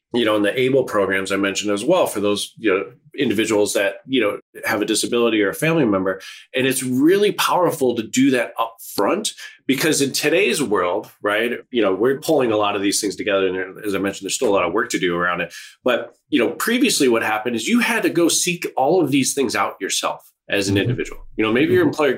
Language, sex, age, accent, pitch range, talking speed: English, male, 20-39, American, 110-170 Hz, 240 wpm